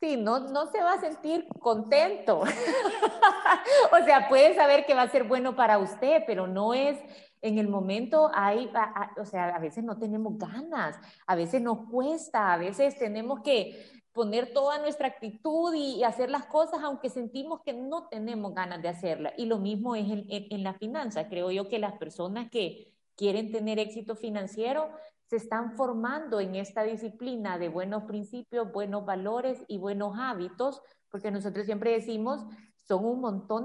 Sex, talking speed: female, 180 wpm